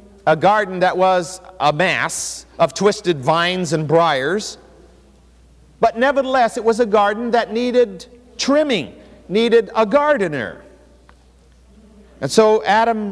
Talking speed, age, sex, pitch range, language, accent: 120 wpm, 50-69, male, 145-225 Hz, English, American